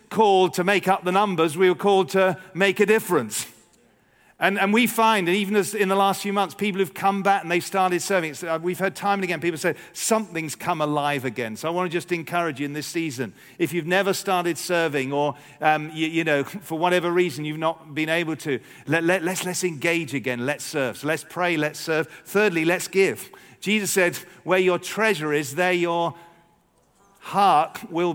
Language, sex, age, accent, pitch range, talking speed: English, male, 50-69, British, 155-185 Hz, 210 wpm